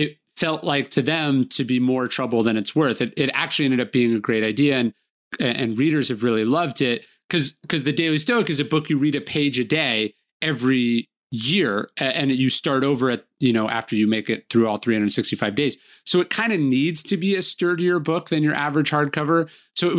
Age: 30-49